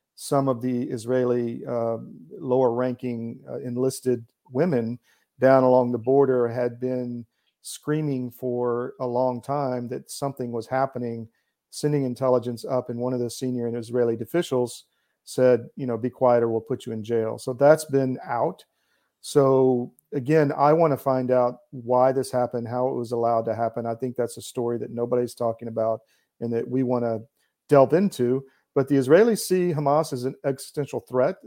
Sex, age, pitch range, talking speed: male, 40-59, 120-135 Hz, 175 wpm